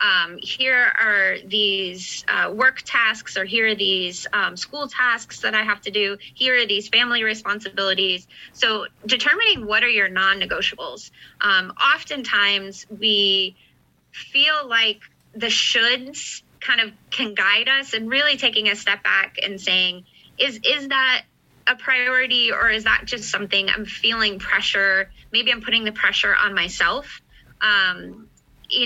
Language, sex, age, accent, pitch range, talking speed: English, female, 20-39, American, 200-260 Hz, 150 wpm